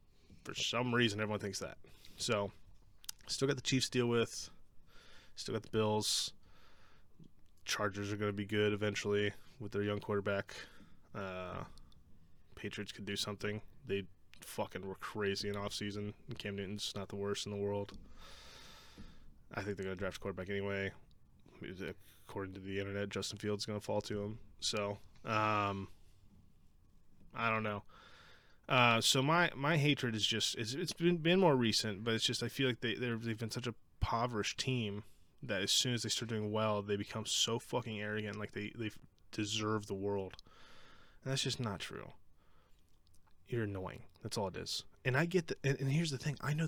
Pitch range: 100-120 Hz